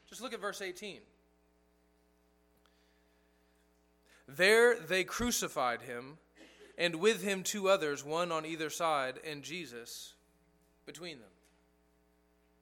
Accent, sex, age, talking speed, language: American, male, 20-39, 105 wpm, English